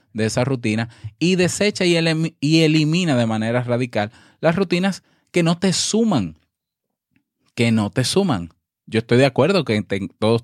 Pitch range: 100-125 Hz